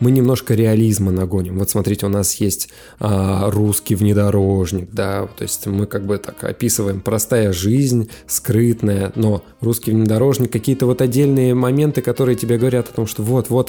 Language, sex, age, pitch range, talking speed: Russian, male, 20-39, 105-125 Hz, 160 wpm